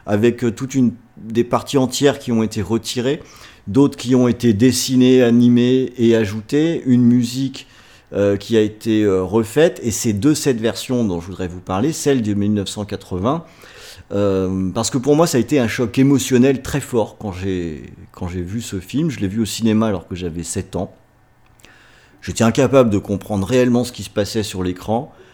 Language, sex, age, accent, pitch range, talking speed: French, male, 40-59, French, 100-130 Hz, 185 wpm